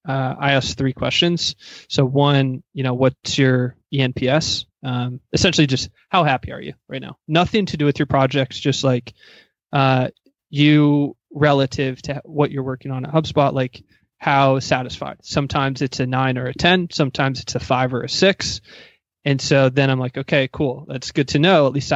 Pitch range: 130-150 Hz